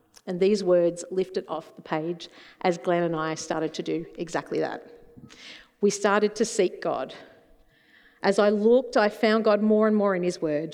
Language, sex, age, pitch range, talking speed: English, female, 50-69, 170-215 Hz, 185 wpm